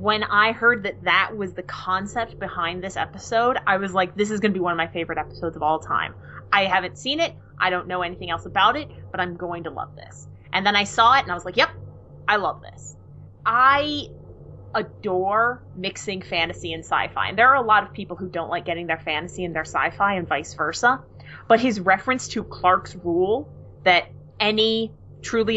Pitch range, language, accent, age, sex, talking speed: 175-215 Hz, English, American, 20-39, female, 215 wpm